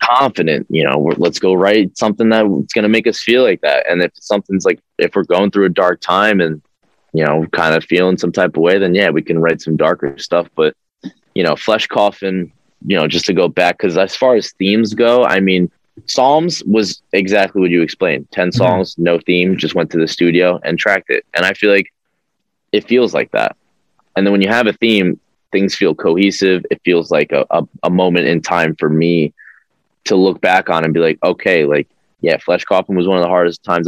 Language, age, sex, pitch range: English, 20-39, male, 80-100 Hz